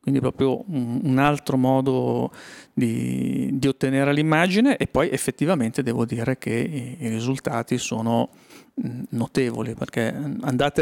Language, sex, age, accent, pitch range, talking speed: Italian, male, 40-59, native, 120-140 Hz, 120 wpm